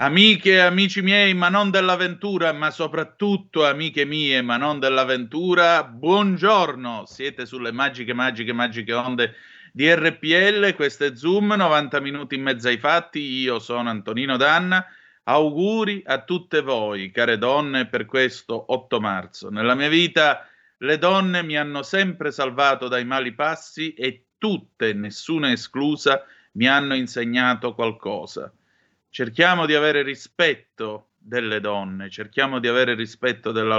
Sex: male